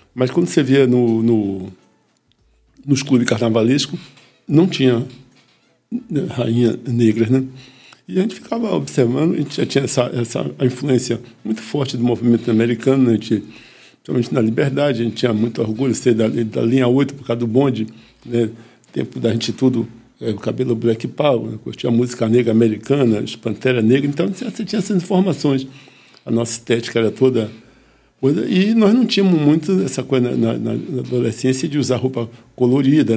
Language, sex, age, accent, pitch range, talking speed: Portuguese, male, 60-79, Brazilian, 115-140 Hz, 175 wpm